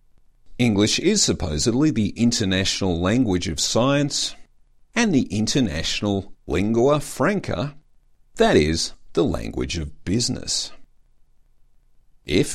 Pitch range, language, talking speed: 90-140 Hz, English, 95 wpm